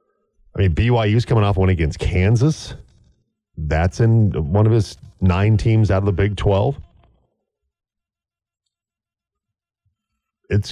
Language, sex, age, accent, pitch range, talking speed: English, male, 40-59, American, 85-105 Hz, 120 wpm